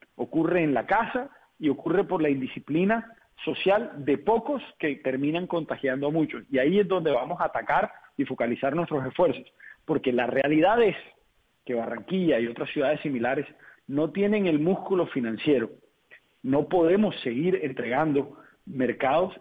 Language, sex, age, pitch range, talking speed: Spanish, male, 40-59, 135-190 Hz, 150 wpm